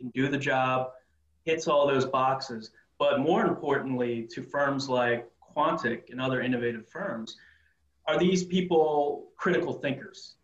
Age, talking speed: 30-49, 140 wpm